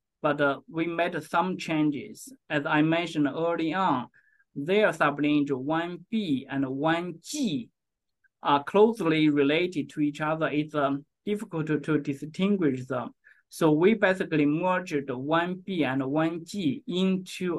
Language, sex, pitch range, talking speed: English, male, 145-175 Hz, 125 wpm